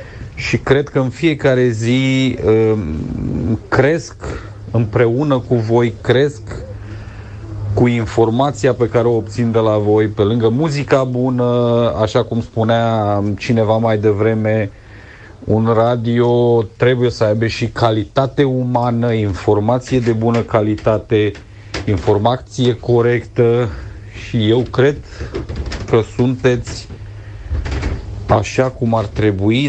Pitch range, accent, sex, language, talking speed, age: 105-125 Hz, native, male, Romanian, 105 wpm, 40-59